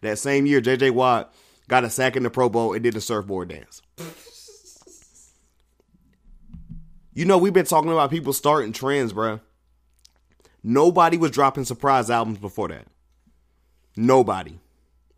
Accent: American